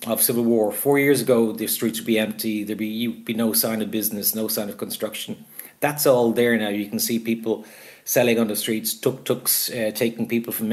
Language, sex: English, male